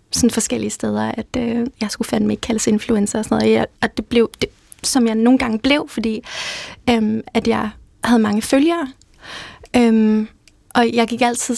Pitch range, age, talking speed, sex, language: 220-245 Hz, 20-39, 185 wpm, female, Danish